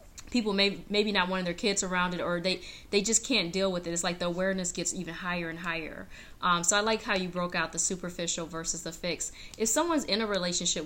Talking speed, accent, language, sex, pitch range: 245 wpm, American, English, female, 160-185 Hz